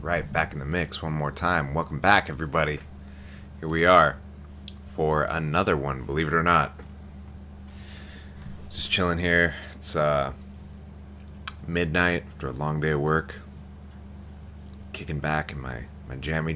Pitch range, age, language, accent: 70-80 Hz, 30-49, English, American